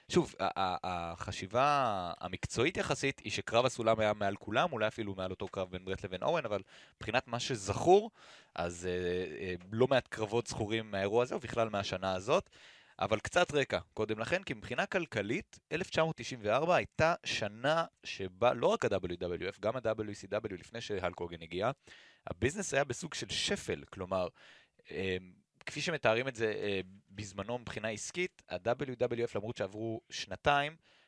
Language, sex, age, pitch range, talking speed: Hebrew, male, 30-49, 95-120 Hz, 135 wpm